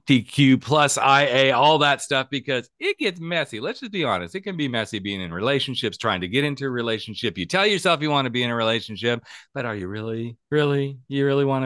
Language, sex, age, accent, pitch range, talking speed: English, male, 40-59, American, 100-145 Hz, 235 wpm